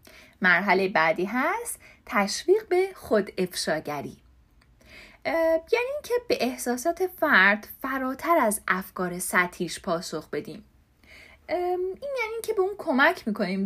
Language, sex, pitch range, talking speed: Persian, female, 205-325 Hz, 110 wpm